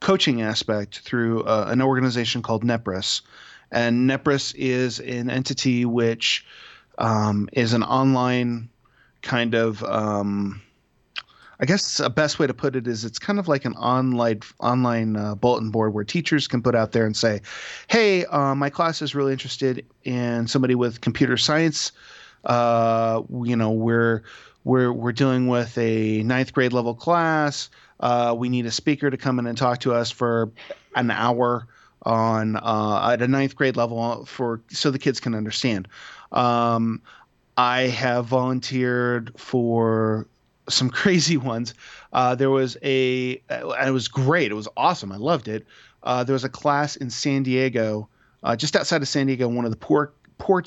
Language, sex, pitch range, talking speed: English, male, 115-135 Hz, 170 wpm